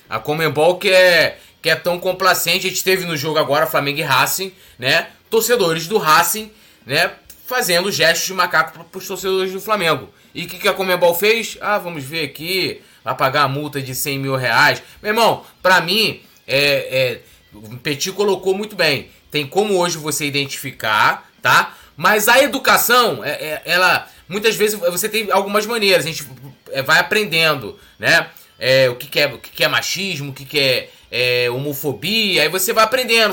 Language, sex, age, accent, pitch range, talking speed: Portuguese, male, 20-39, Brazilian, 150-205 Hz, 185 wpm